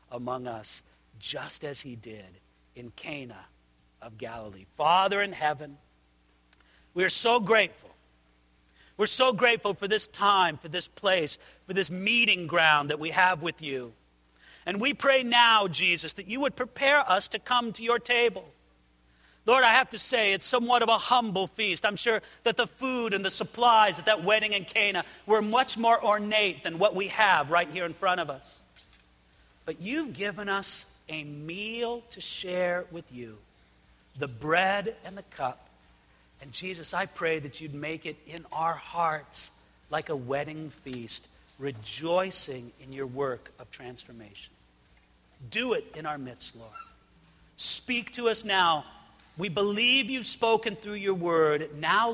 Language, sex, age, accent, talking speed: English, male, 50-69, American, 165 wpm